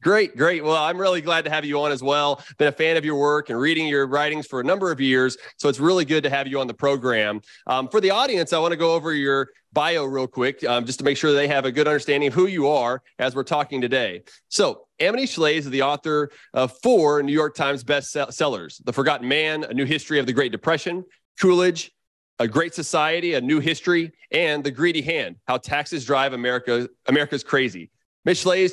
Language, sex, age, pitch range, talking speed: English, male, 30-49, 135-160 Hz, 225 wpm